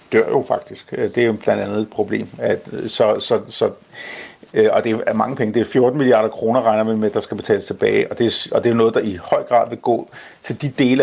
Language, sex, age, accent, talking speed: Danish, male, 50-69, native, 250 wpm